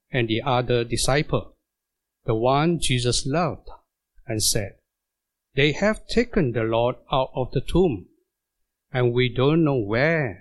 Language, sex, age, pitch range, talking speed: English, male, 60-79, 120-175 Hz, 140 wpm